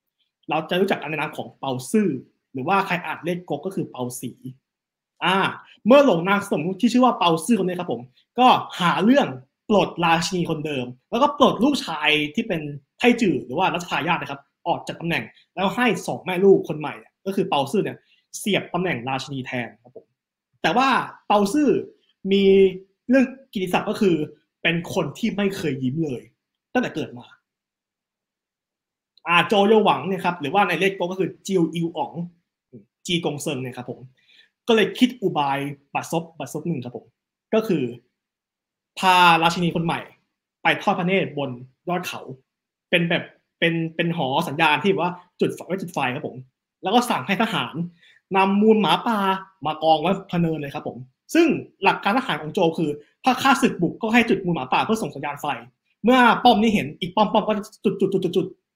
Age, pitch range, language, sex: 20-39, 150-205 Hz, English, male